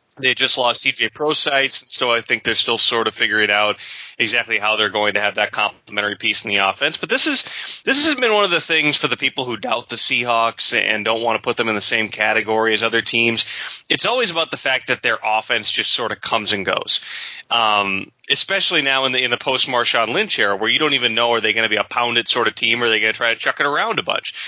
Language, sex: English, male